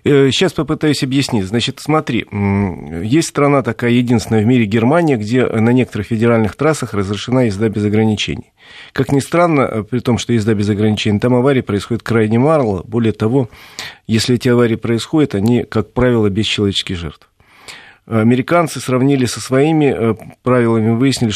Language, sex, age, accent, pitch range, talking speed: Russian, male, 40-59, native, 105-130 Hz, 150 wpm